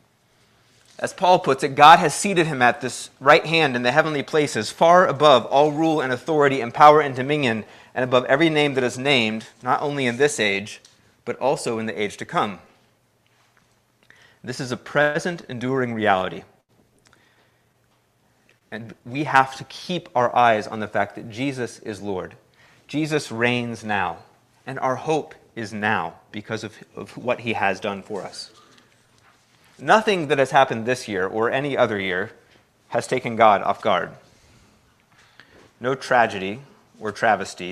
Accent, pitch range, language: American, 110-145 Hz, English